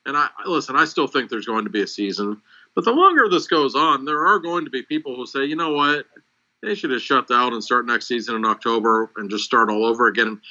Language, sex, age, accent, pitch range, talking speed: English, male, 50-69, American, 110-140 Hz, 265 wpm